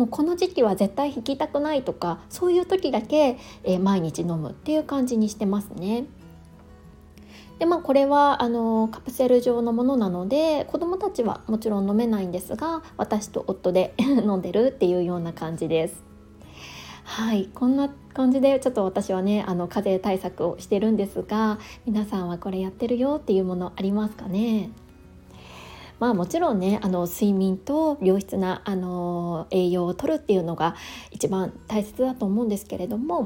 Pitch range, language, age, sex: 190-260 Hz, Japanese, 20-39, female